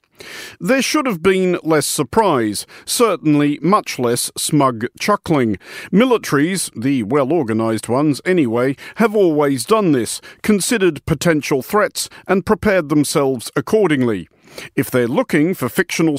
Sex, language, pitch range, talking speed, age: male, English, 135-190 Hz, 120 wpm, 50-69